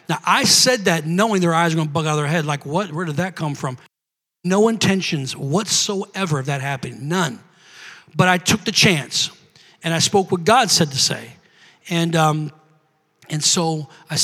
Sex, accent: male, American